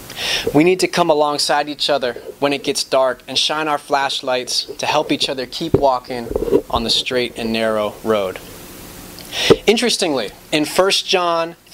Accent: American